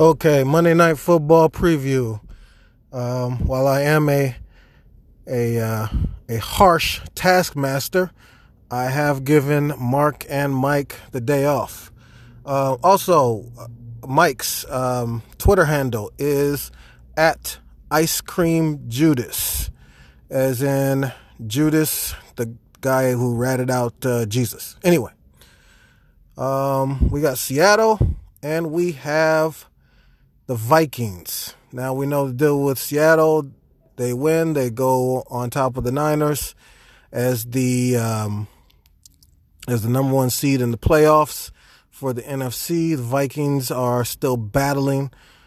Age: 20-39